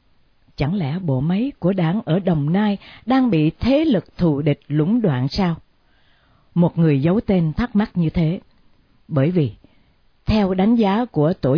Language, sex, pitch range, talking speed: Vietnamese, female, 145-230 Hz, 170 wpm